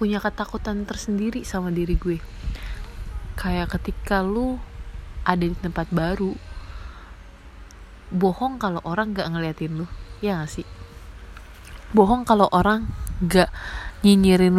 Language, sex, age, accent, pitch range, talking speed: Indonesian, female, 20-39, native, 150-200 Hz, 110 wpm